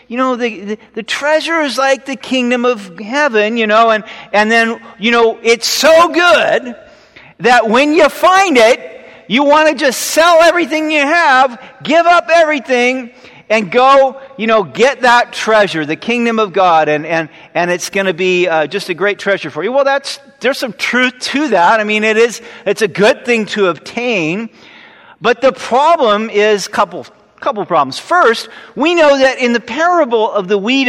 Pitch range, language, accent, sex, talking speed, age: 210-275 Hz, English, American, male, 185 wpm, 50-69